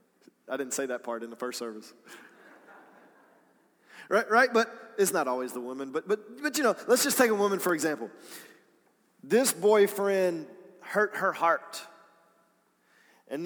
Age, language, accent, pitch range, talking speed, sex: 30-49, English, American, 185-255 Hz, 155 wpm, male